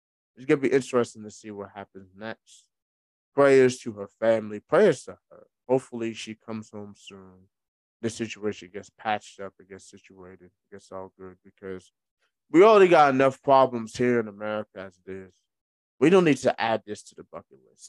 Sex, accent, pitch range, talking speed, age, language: male, American, 105-130 Hz, 190 wpm, 20-39, English